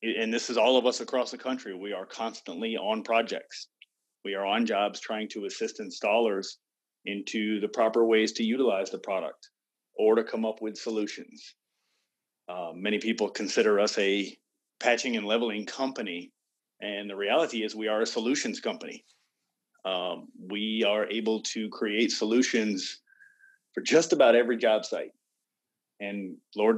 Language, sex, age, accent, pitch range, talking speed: English, male, 30-49, American, 105-135 Hz, 155 wpm